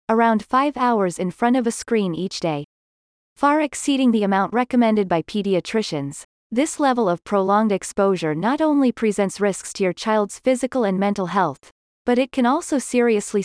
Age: 30-49